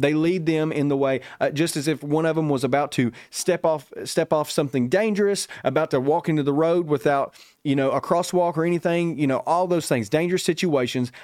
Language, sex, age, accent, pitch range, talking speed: English, male, 30-49, American, 130-160 Hz, 225 wpm